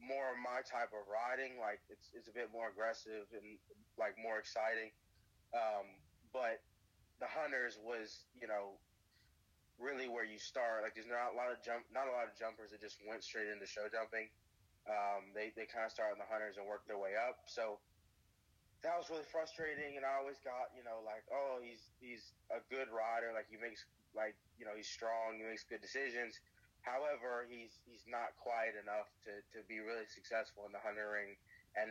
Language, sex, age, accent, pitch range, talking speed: English, male, 20-39, American, 105-120 Hz, 200 wpm